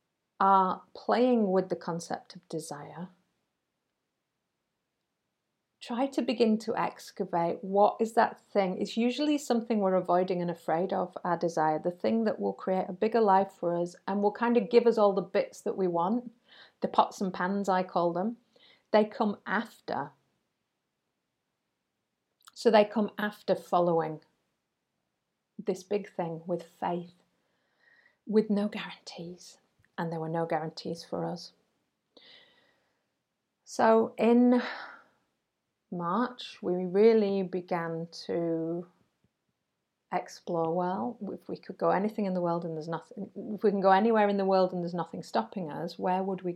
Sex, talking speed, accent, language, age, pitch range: female, 145 wpm, British, English, 40-59, 175-220 Hz